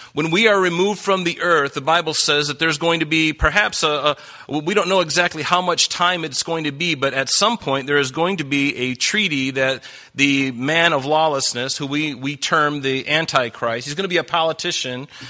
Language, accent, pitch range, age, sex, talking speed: English, American, 135-165 Hz, 40-59, male, 225 wpm